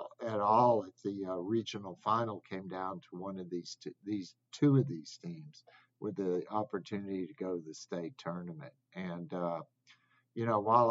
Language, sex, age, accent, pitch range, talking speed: English, male, 50-69, American, 95-115 Hz, 180 wpm